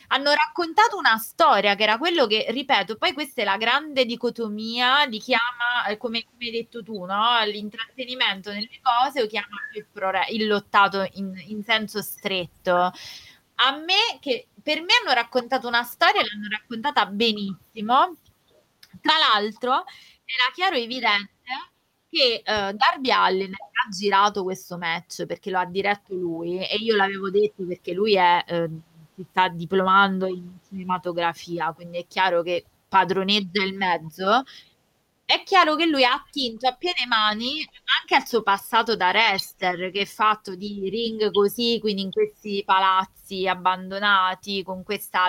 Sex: female